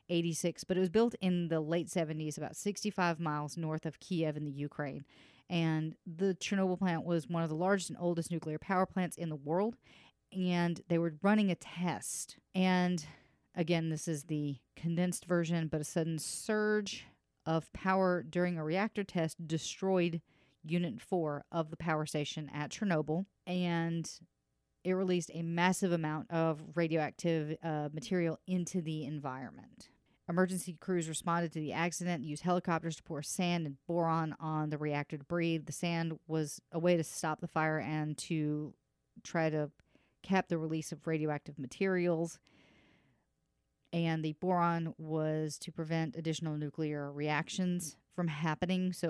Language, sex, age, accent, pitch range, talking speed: English, female, 40-59, American, 155-175 Hz, 155 wpm